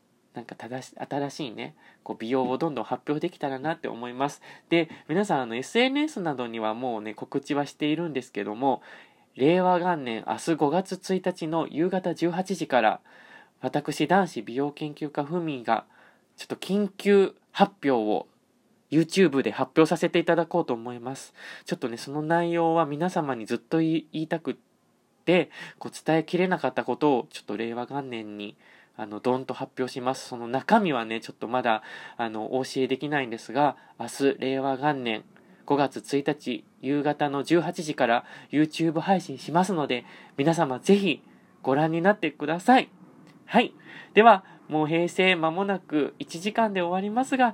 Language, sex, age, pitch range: Japanese, male, 20-39, 130-180 Hz